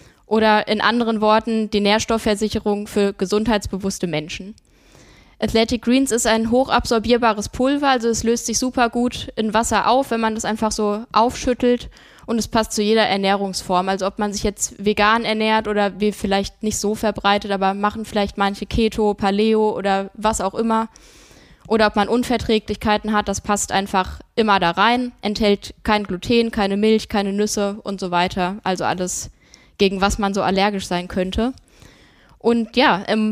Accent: German